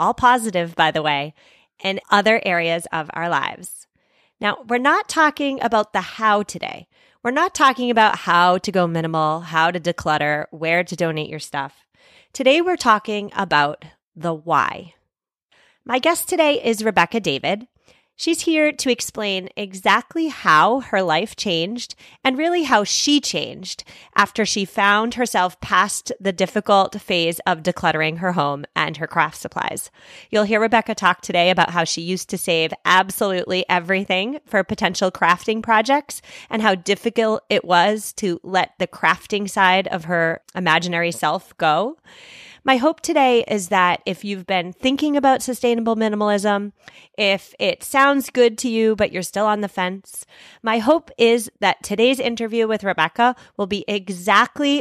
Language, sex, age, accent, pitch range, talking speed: English, female, 30-49, American, 175-230 Hz, 160 wpm